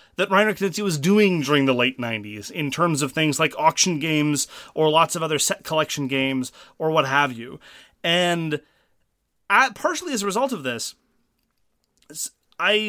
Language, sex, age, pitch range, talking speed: English, male, 30-49, 135-185 Hz, 165 wpm